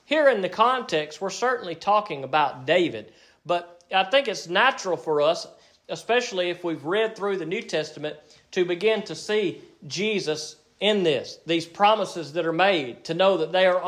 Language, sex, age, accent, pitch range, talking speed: English, male, 40-59, American, 160-205 Hz, 175 wpm